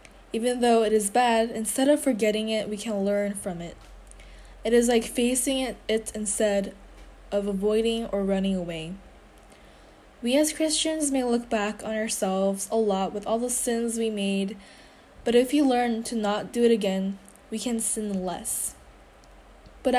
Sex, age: female, 10-29